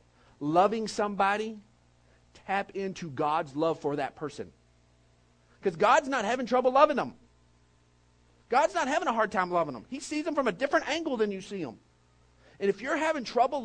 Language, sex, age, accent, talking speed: English, male, 50-69, American, 175 wpm